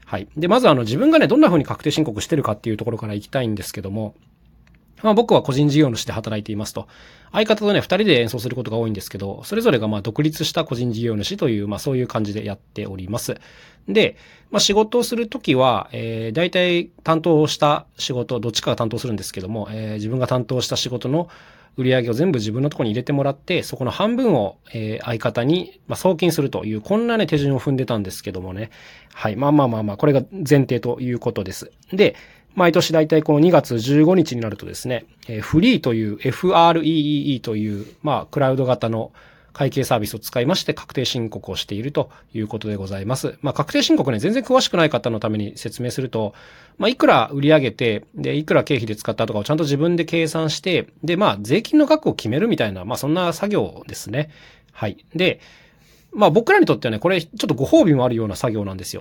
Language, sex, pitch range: Japanese, male, 110-165 Hz